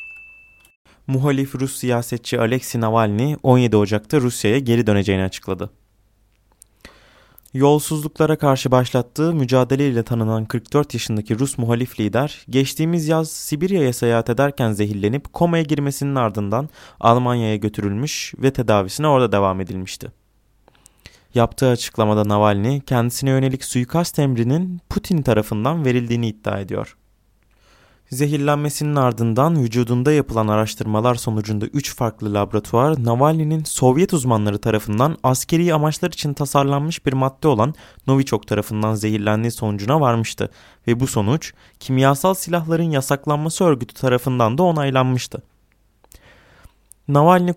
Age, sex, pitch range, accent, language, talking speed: 20-39, male, 110-145 Hz, native, Turkish, 110 wpm